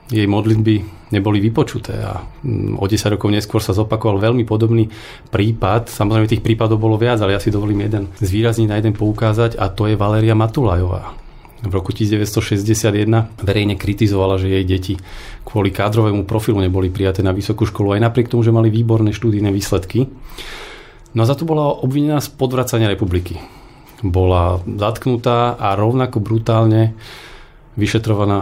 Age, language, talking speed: 40-59, Slovak, 150 wpm